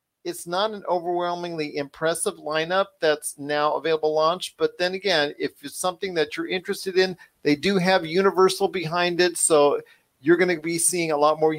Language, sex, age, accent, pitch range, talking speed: English, male, 40-59, American, 145-175 Hz, 180 wpm